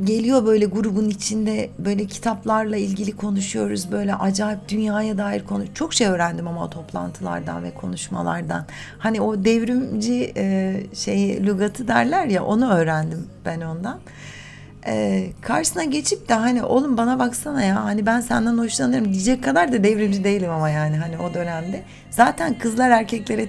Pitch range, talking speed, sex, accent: 185-230 Hz, 150 wpm, female, native